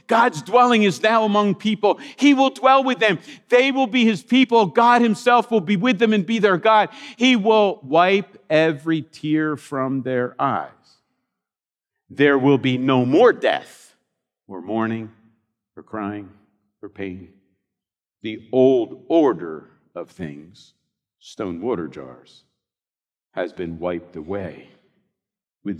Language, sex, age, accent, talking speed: English, male, 50-69, American, 135 wpm